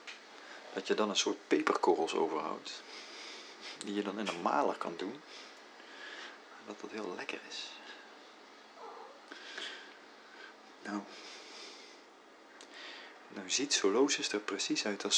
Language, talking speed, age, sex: Dutch, 115 wpm, 40-59, male